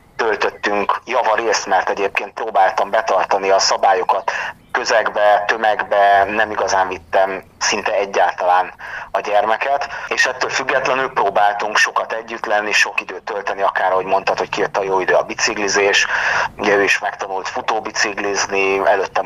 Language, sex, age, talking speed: Hungarian, male, 30-49, 135 wpm